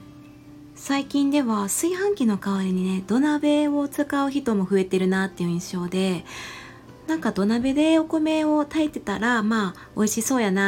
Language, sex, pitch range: Japanese, female, 185-275 Hz